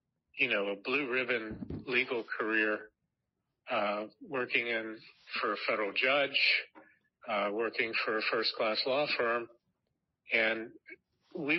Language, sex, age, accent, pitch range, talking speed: English, male, 50-69, American, 110-130 Hz, 125 wpm